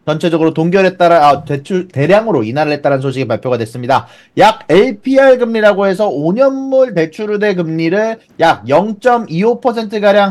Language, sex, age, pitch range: Korean, male, 30-49, 145-210 Hz